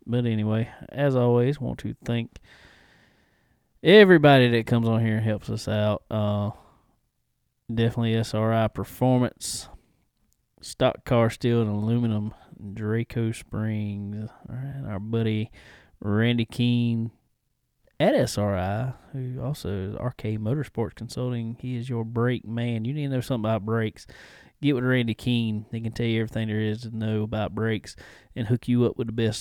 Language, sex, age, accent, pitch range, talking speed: English, male, 20-39, American, 110-120 Hz, 155 wpm